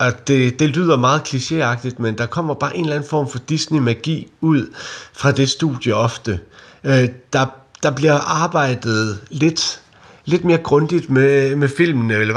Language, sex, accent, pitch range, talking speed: Danish, male, native, 125-155 Hz, 160 wpm